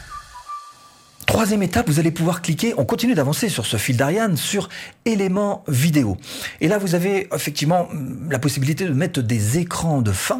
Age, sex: 40-59, male